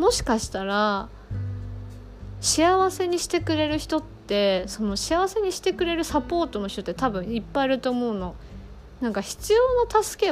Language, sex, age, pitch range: Japanese, female, 20-39, 190-320 Hz